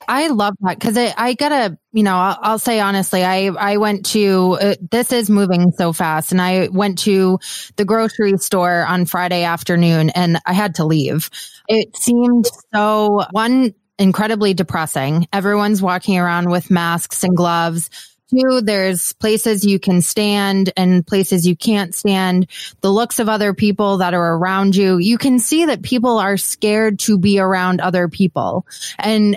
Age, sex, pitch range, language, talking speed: 20-39, female, 180-220 Hz, English, 170 wpm